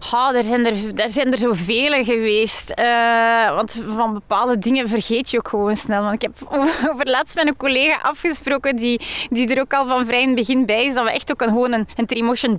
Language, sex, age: English, female, 20-39